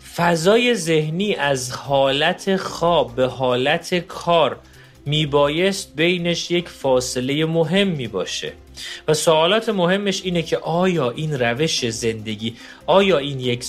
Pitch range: 120-160 Hz